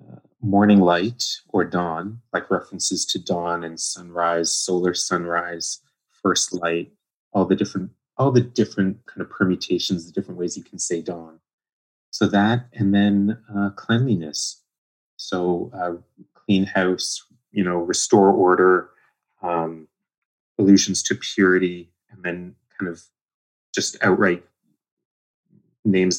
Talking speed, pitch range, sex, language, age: 125 wpm, 85-100 Hz, male, English, 30-49